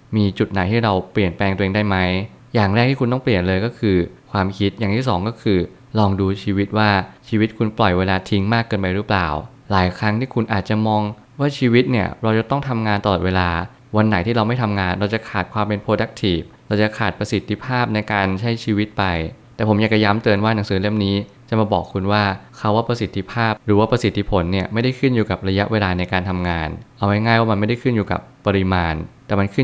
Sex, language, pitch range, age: male, Thai, 95-115 Hz, 20-39